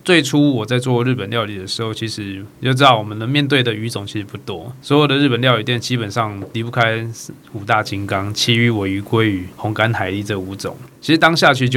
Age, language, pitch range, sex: 20-39, Chinese, 105-125 Hz, male